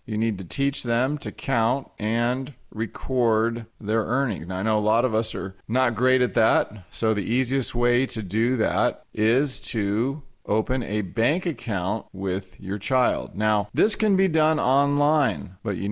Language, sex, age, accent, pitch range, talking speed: English, male, 40-59, American, 110-130 Hz, 175 wpm